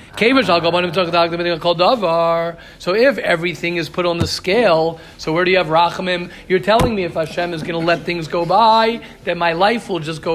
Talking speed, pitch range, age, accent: 185 wpm, 170-220 Hz, 40-59, American